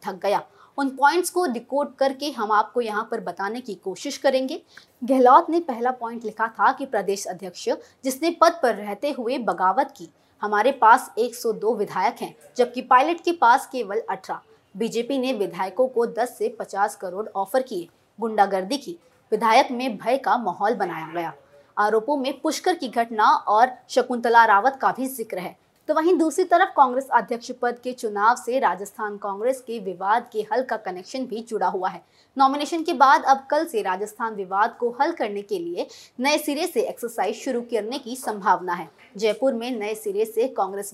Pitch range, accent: 210-280 Hz, native